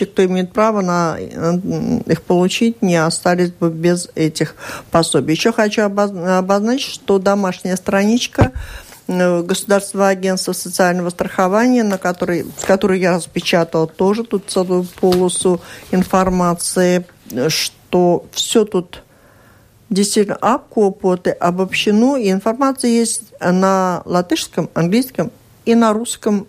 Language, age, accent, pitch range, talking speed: Russian, 50-69, native, 170-205 Hz, 110 wpm